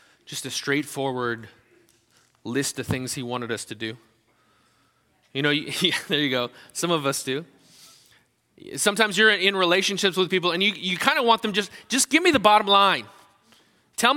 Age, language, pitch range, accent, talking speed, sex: 30-49, English, 150-210 Hz, American, 170 wpm, male